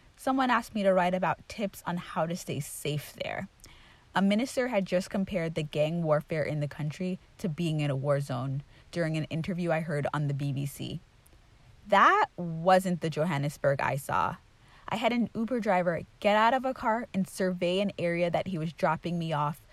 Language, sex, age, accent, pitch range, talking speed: English, female, 20-39, American, 140-185 Hz, 195 wpm